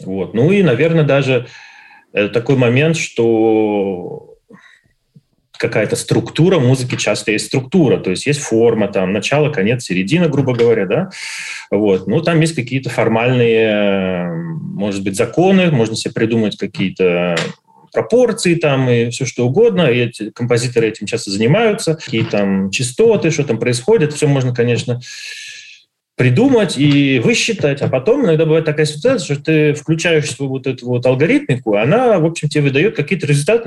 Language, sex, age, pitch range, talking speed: Russian, male, 30-49, 110-160 Hz, 150 wpm